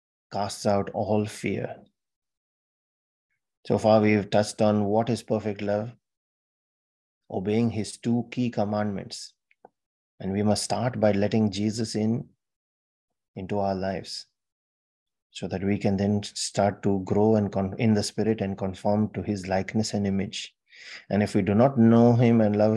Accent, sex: Indian, male